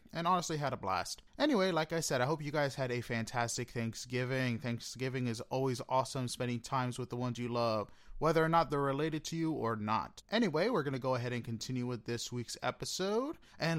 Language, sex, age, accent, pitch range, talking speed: English, male, 30-49, American, 125-170 Hz, 220 wpm